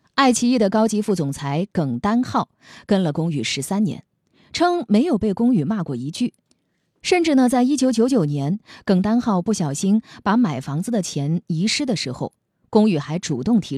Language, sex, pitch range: Chinese, female, 155-235 Hz